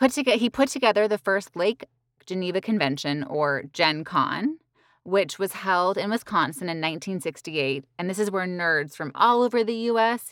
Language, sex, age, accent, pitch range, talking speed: English, female, 20-39, American, 150-210 Hz, 165 wpm